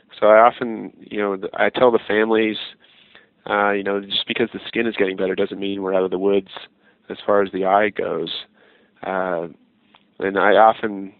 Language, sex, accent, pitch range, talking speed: English, male, American, 100-110 Hz, 195 wpm